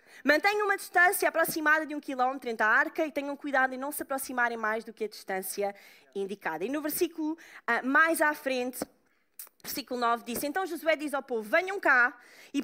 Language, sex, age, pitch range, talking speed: Portuguese, female, 20-39, 255-345 Hz, 190 wpm